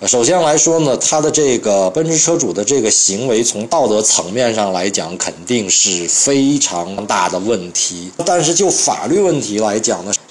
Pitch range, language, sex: 95-135 Hz, Chinese, male